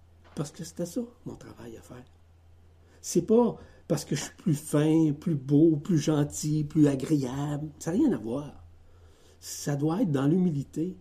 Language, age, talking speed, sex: French, 60-79, 180 wpm, male